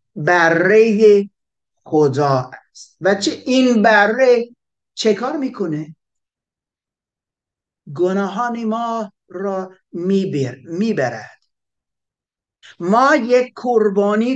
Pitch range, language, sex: 155-215 Hz, Persian, male